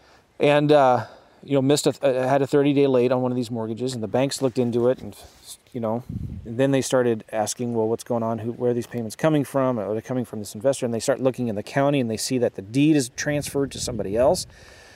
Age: 30-49